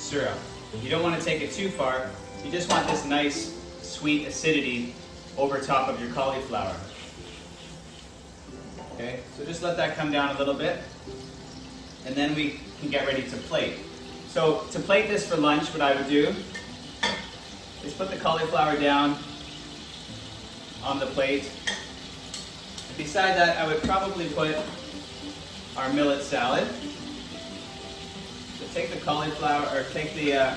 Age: 30-49